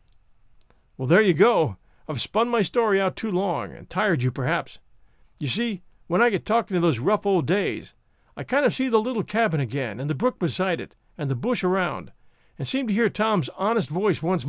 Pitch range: 145-215 Hz